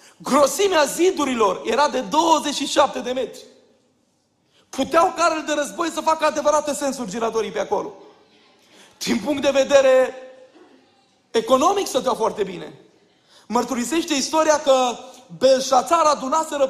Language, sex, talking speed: Romanian, male, 110 wpm